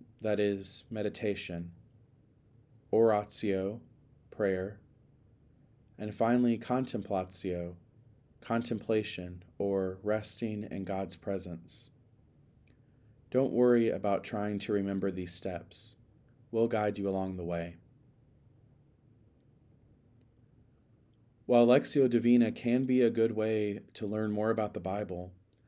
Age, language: 40-59, English